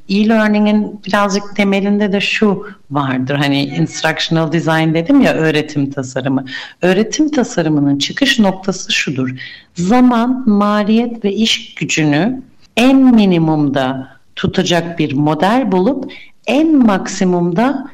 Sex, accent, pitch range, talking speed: female, native, 155-225 Hz, 105 wpm